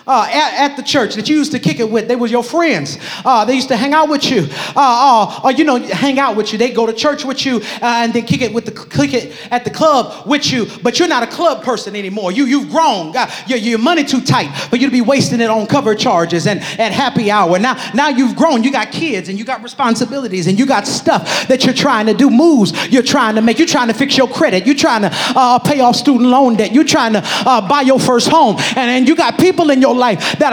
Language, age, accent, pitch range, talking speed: English, 40-59, American, 235-290 Hz, 275 wpm